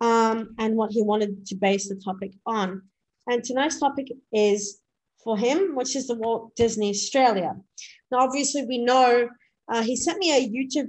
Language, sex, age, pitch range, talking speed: English, female, 30-49, 210-250 Hz, 175 wpm